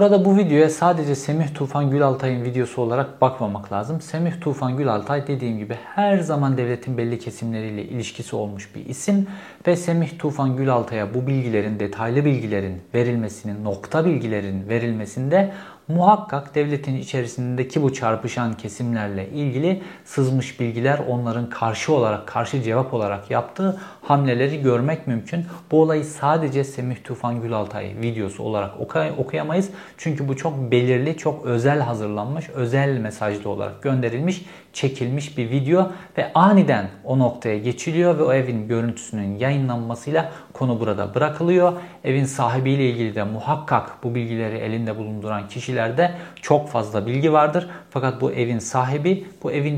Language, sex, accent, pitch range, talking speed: Turkish, male, native, 115-150 Hz, 135 wpm